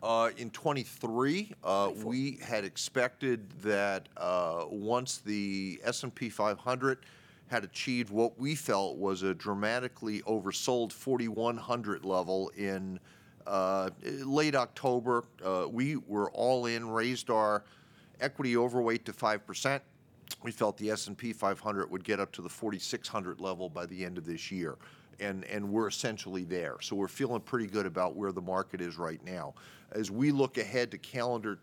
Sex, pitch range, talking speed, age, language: male, 100-125 Hz, 150 wpm, 40-59, English